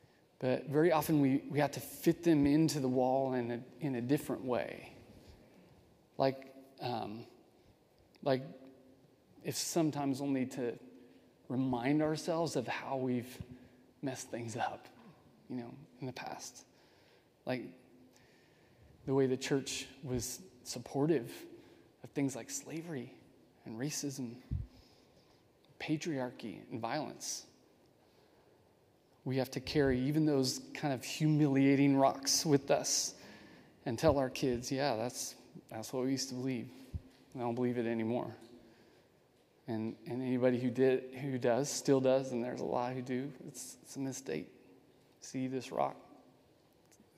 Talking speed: 135 wpm